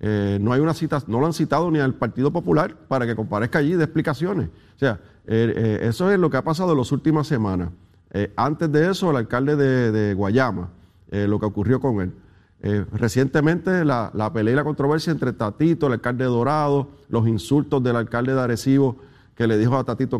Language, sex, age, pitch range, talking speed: Spanish, male, 40-59, 110-145 Hz, 215 wpm